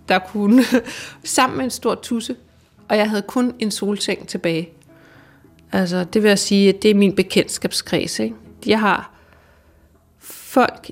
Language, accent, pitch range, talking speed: Danish, native, 180-225 Hz, 155 wpm